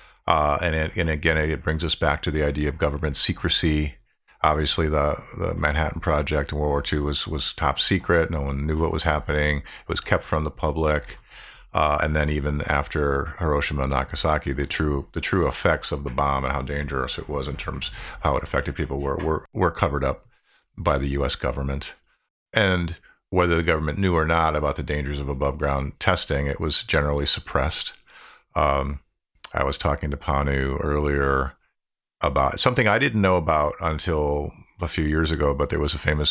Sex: male